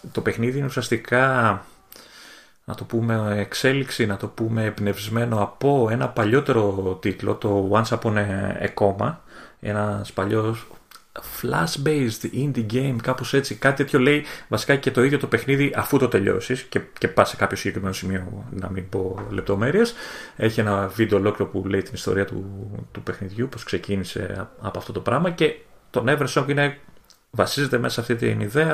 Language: Greek